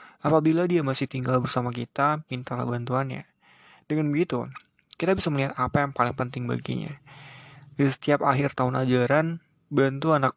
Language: Indonesian